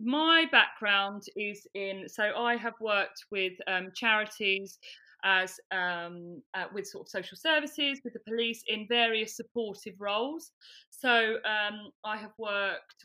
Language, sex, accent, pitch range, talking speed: English, female, British, 190-240 Hz, 145 wpm